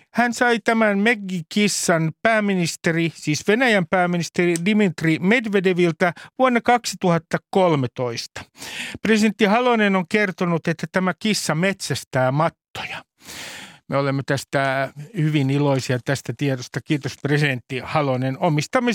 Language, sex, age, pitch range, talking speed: Finnish, male, 50-69, 145-200 Hz, 100 wpm